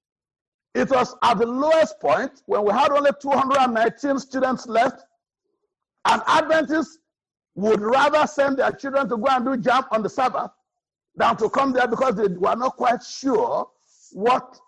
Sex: male